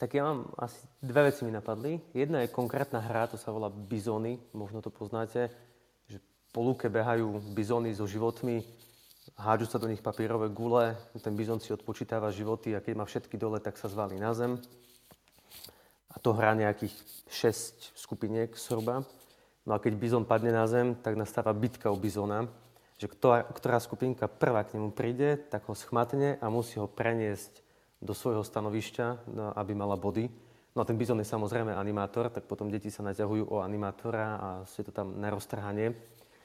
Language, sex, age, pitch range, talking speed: Slovak, male, 30-49, 105-120 Hz, 175 wpm